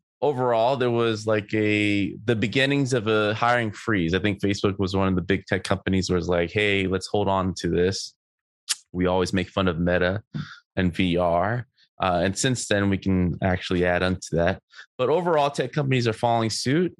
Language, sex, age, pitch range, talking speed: English, male, 20-39, 90-120 Hz, 200 wpm